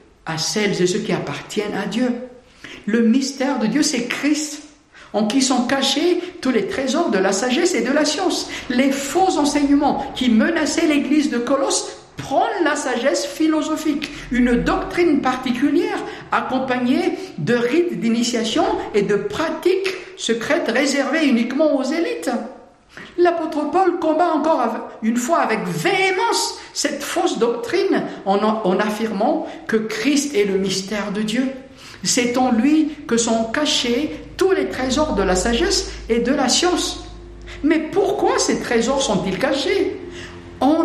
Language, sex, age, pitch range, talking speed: French, male, 60-79, 235-330 Hz, 145 wpm